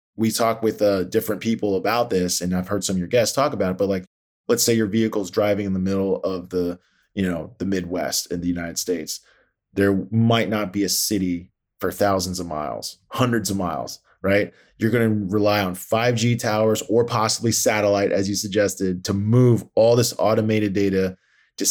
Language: English